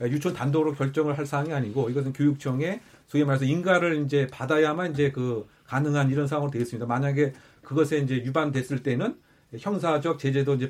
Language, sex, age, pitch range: Korean, male, 40-59, 130-155 Hz